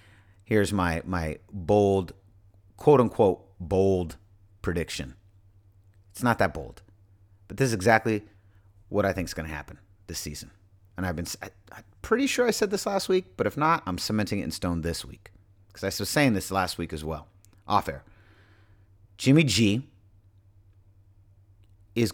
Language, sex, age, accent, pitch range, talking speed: English, male, 40-59, American, 95-110 Hz, 165 wpm